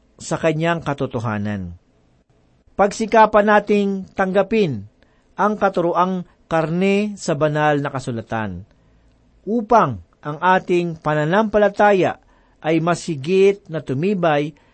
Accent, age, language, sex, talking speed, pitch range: native, 50-69, Filipino, male, 85 wpm, 140-195 Hz